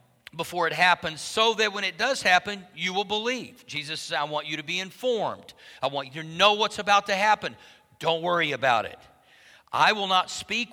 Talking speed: 205 wpm